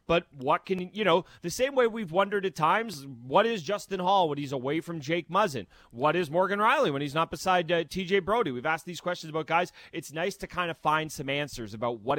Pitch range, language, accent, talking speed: 125-160 Hz, English, American, 240 wpm